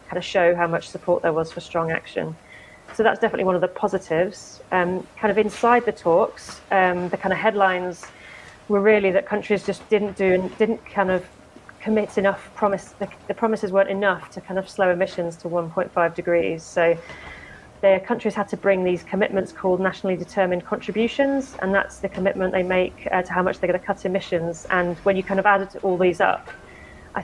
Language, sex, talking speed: English, female, 205 wpm